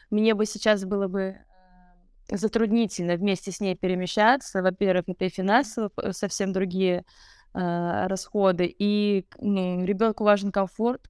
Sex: female